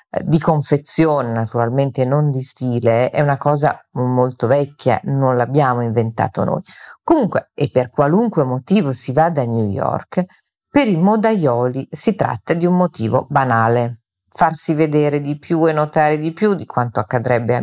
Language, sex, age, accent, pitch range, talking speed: Italian, female, 40-59, native, 125-160 Hz, 155 wpm